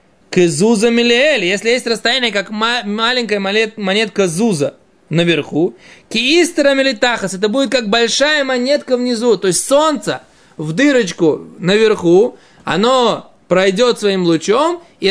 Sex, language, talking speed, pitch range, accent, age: male, Russian, 105 wpm, 185-245 Hz, native, 20-39